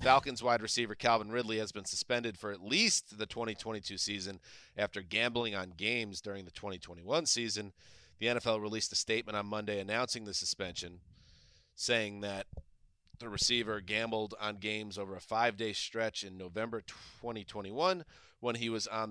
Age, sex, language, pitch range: 30-49, male, English, 100-115 Hz